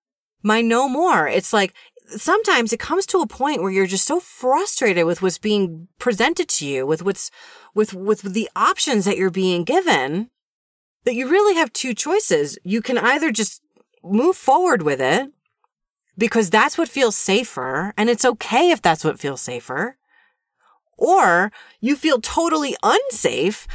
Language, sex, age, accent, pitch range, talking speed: English, female, 30-49, American, 165-250 Hz, 160 wpm